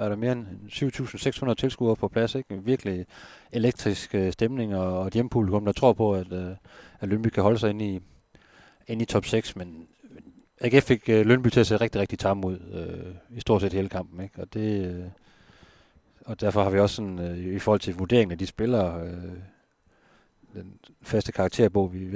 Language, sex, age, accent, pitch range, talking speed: Danish, male, 30-49, native, 95-110 Hz, 175 wpm